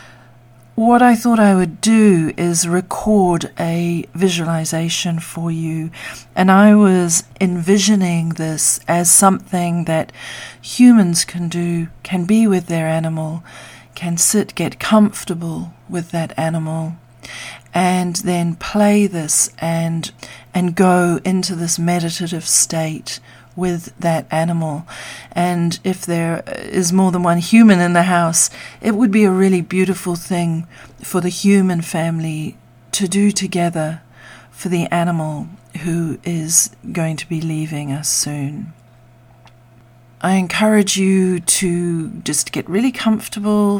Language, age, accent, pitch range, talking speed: English, 40-59, Australian, 160-190 Hz, 125 wpm